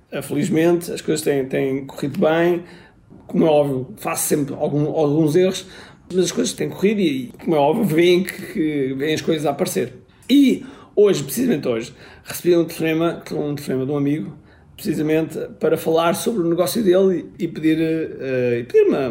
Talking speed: 160 wpm